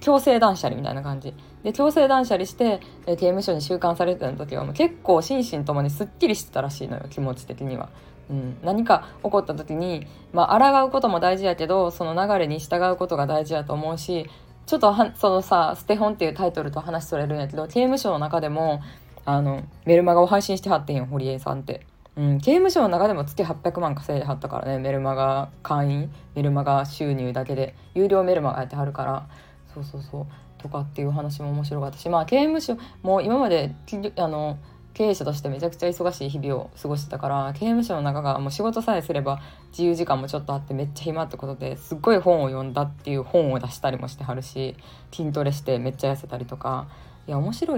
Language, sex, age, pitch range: Japanese, female, 20-39, 140-195 Hz